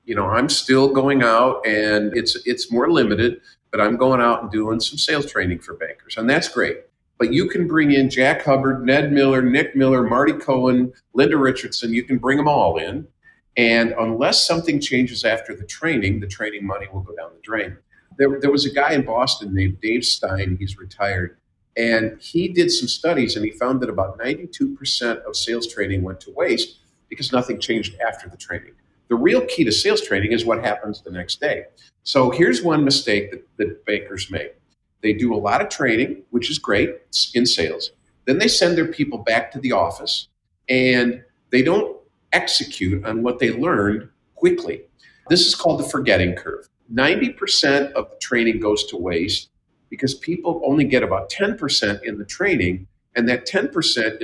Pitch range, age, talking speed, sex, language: 110-150 Hz, 50-69, 190 wpm, male, English